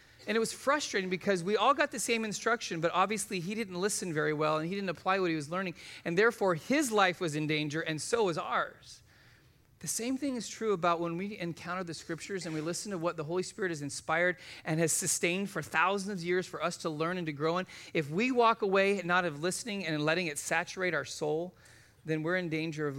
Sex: male